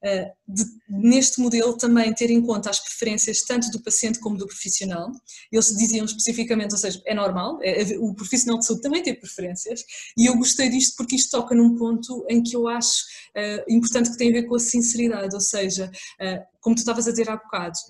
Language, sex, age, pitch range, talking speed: Portuguese, female, 20-39, 200-235 Hz, 195 wpm